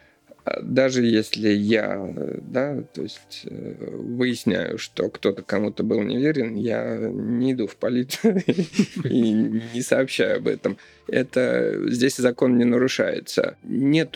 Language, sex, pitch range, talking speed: Russian, male, 110-130 Hz, 115 wpm